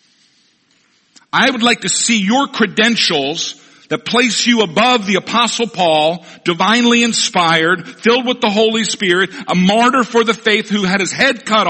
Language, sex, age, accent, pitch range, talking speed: English, male, 50-69, American, 160-220 Hz, 160 wpm